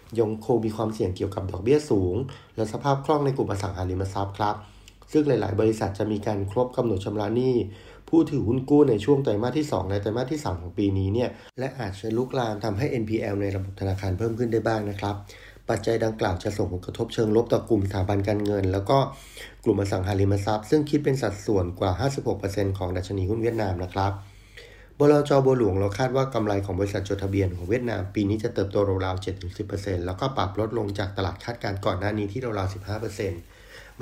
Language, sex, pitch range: Thai, male, 100-120 Hz